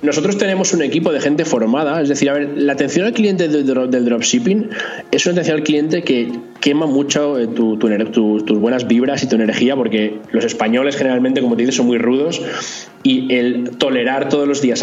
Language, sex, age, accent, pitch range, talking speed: Spanish, male, 20-39, Spanish, 120-155 Hz, 200 wpm